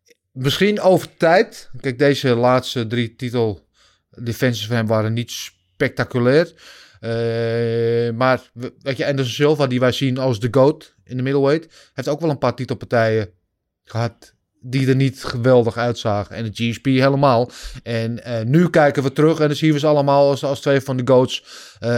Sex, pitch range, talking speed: male, 115-145 Hz, 175 wpm